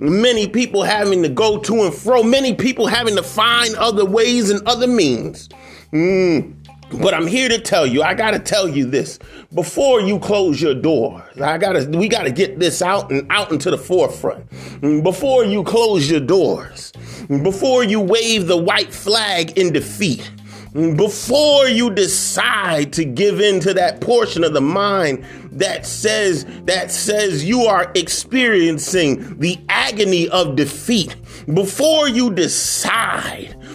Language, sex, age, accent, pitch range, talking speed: English, male, 30-49, American, 165-230 Hz, 160 wpm